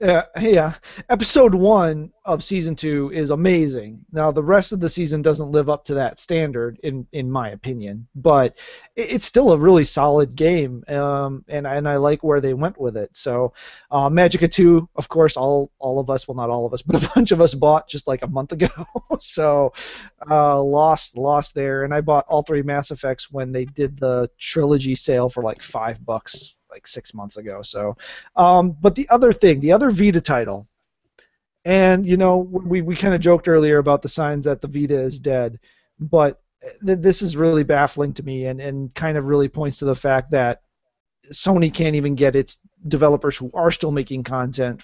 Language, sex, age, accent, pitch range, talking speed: English, male, 30-49, American, 130-165 Hz, 200 wpm